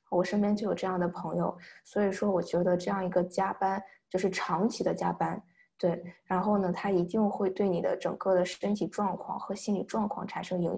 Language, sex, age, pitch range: Chinese, female, 20-39, 175-200 Hz